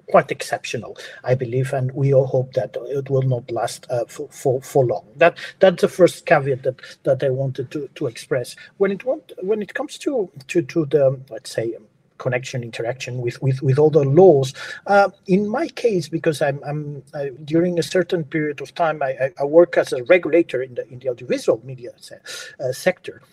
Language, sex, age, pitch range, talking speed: English, male, 50-69, 135-185 Hz, 205 wpm